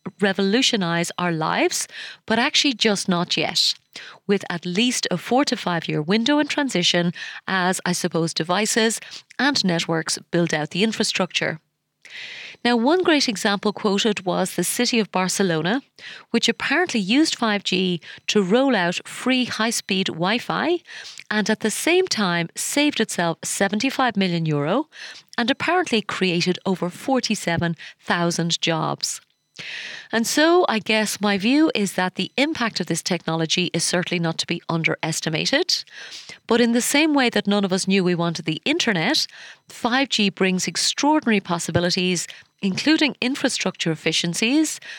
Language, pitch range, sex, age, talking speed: English, 170-235 Hz, female, 30-49, 140 wpm